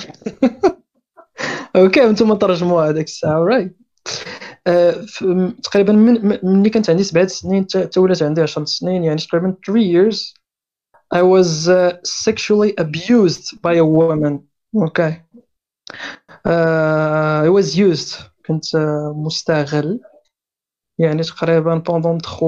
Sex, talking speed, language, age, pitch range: male, 105 wpm, Arabic, 20-39, 160-200 Hz